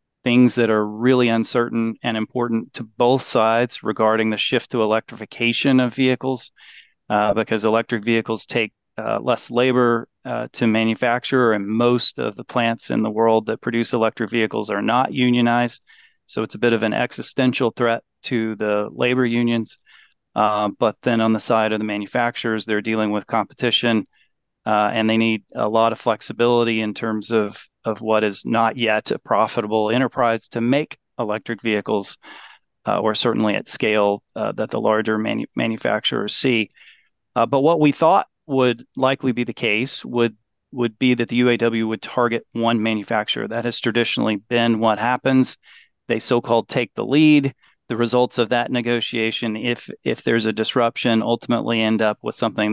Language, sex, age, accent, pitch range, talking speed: English, male, 30-49, American, 110-125 Hz, 170 wpm